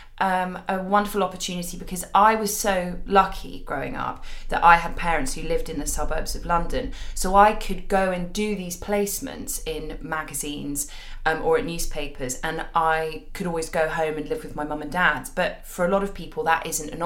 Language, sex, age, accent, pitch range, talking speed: English, female, 20-39, British, 155-190 Hz, 205 wpm